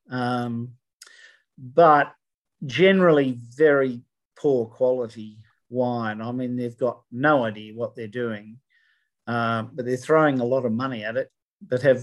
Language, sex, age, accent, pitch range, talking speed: English, male, 50-69, Australian, 120-145 Hz, 140 wpm